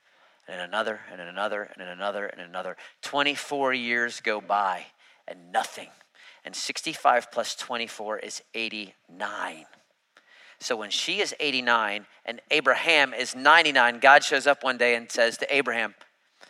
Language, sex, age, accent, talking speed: English, male, 40-59, American, 140 wpm